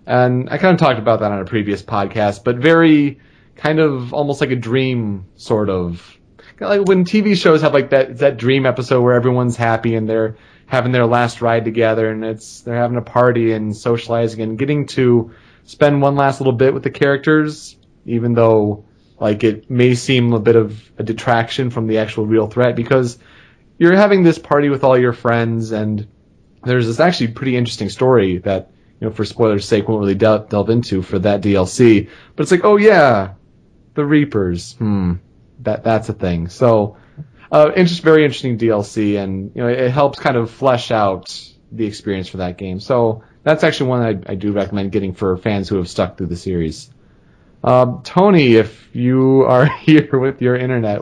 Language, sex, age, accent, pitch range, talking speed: English, male, 30-49, American, 105-135 Hz, 195 wpm